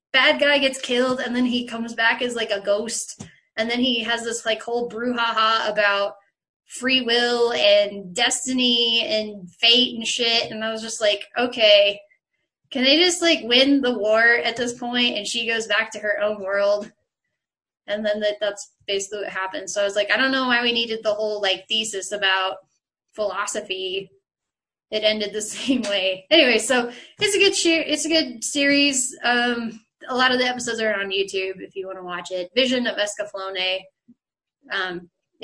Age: 10-29